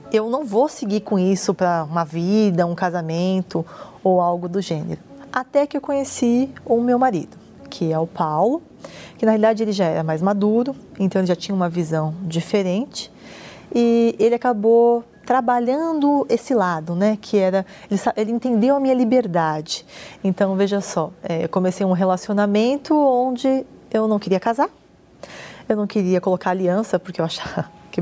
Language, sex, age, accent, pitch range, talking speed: Portuguese, female, 20-39, Brazilian, 185-255 Hz, 165 wpm